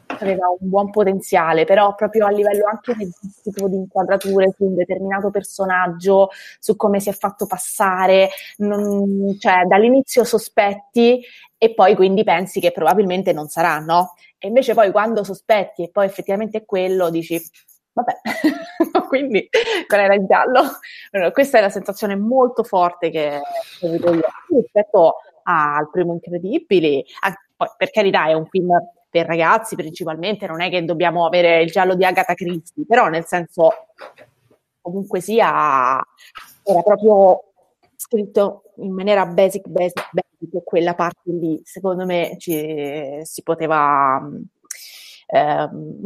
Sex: female